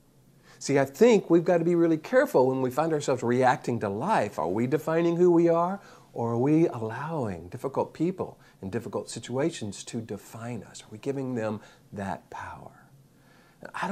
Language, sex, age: English, male, 50-69